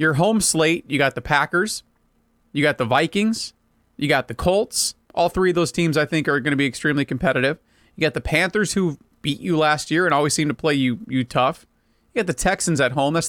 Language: English